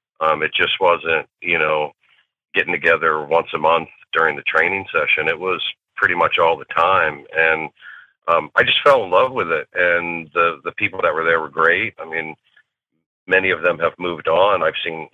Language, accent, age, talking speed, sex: English, American, 40-59, 200 wpm, male